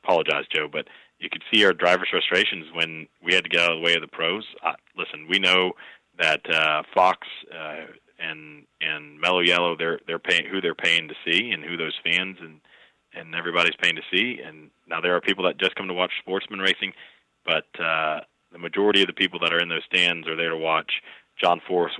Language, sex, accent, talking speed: English, male, American, 220 wpm